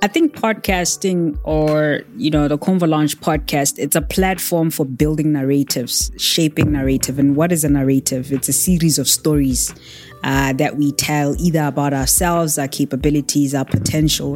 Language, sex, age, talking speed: English, female, 20-39, 160 wpm